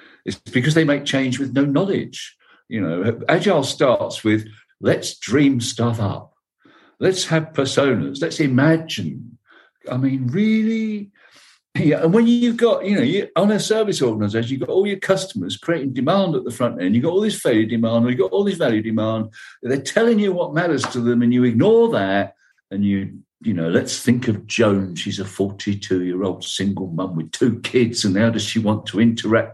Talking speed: 185 wpm